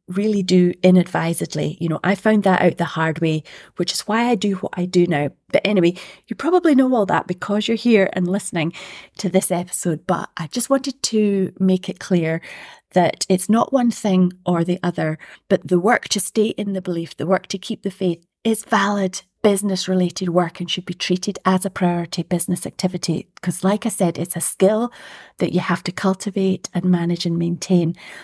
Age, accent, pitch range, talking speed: 30-49, British, 175-200 Hz, 205 wpm